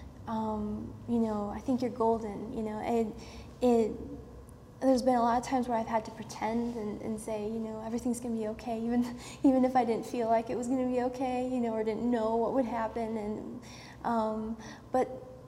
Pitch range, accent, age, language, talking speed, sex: 220-245 Hz, American, 10-29, English, 215 wpm, female